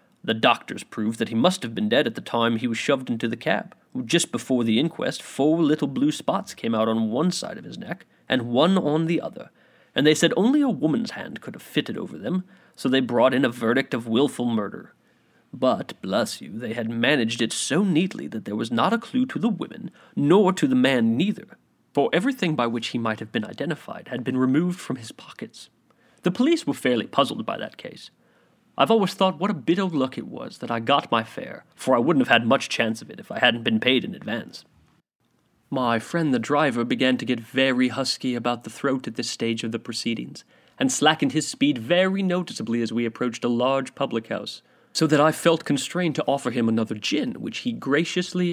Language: English